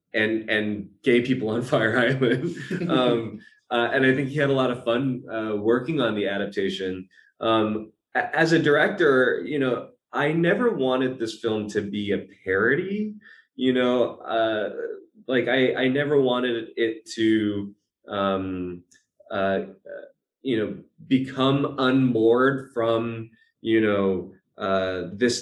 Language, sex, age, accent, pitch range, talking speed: English, male, 20-39, American, 100-125 Hz, 140 wpm